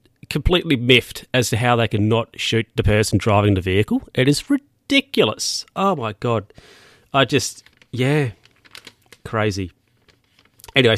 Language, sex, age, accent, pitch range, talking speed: English, male, 30-49, Australian, 105-130 Hz, 135 wpm